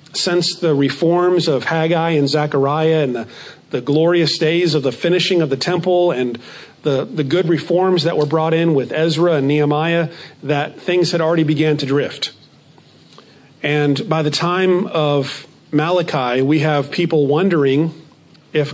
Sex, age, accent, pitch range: male, 40-59, American, 150-180 Hz